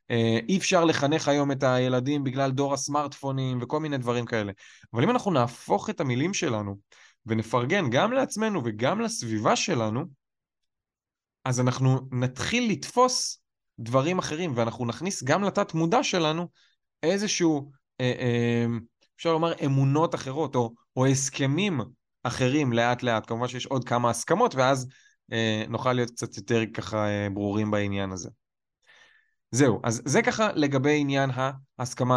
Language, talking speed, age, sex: Hebrew, 130 wpm, 20-39, male